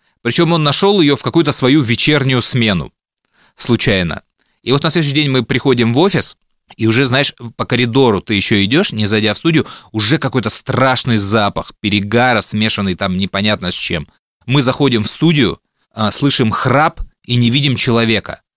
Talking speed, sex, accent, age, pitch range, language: 165 wpm, male, native, 20-39, 105-130 Hz, Russian